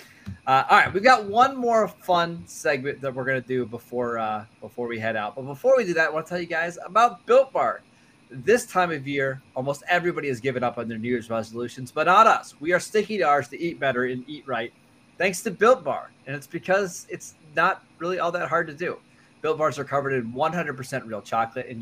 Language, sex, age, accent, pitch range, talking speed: English, male, 20-39, American, 125-170 Hz, 235 wpm